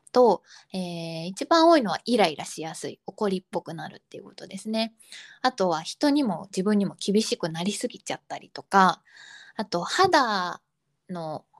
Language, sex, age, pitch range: Japanese, female, 20-39, 170-230 Hz